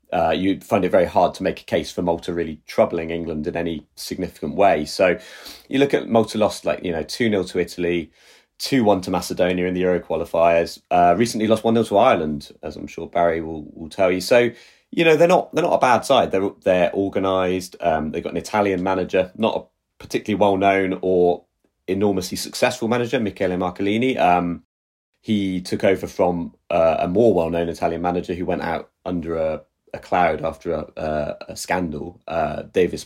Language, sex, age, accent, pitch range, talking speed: English, male, 30-49, British, 85-105 Hz, 195 wpm